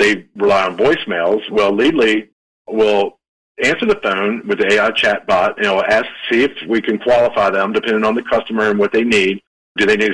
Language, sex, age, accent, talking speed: English, male, 50-69, American, 220 wpm